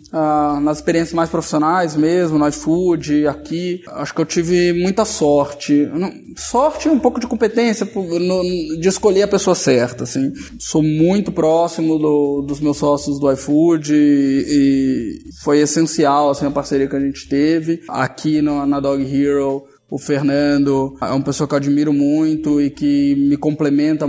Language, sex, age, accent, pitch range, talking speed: Portuguese, male, 20-39, Brazilian, 145-165 Hz, 165 wpm